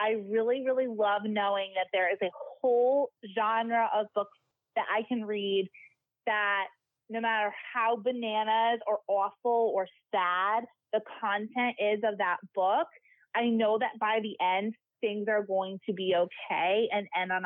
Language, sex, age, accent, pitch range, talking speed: English, female, 30-49, American, 200-255 Hz, 160 wpm